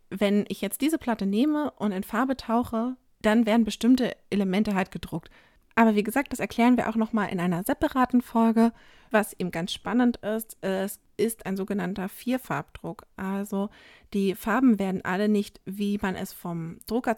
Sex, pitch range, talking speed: female, 185-225 Hz, 170 wpm